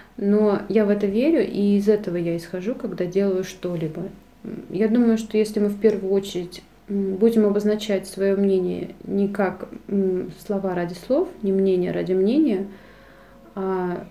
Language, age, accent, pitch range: Russian, 30-49, native, 185-215 Hz